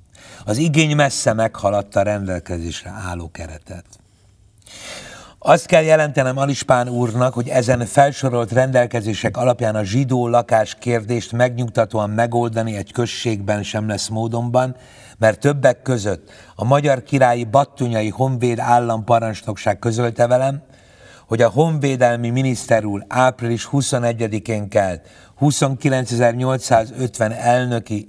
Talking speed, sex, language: 105 wpm, male, Hungarian